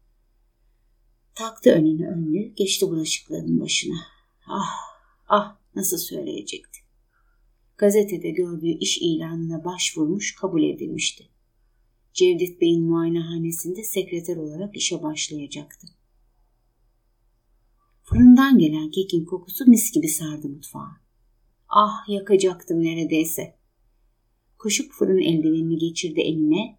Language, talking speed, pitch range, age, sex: Turkish, 90 wpm, 145-200 Hz, 30-49, female